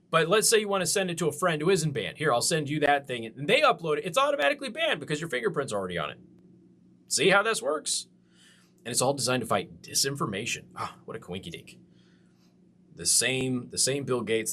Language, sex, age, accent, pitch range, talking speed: English, male, 30-49, American, 125-175 Hz, 235 wpm